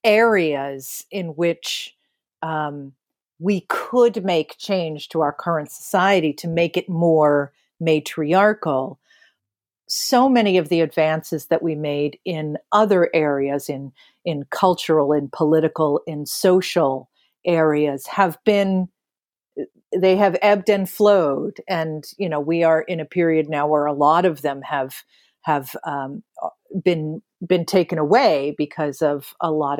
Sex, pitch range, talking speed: female, 150-200 Hz, 135 wpm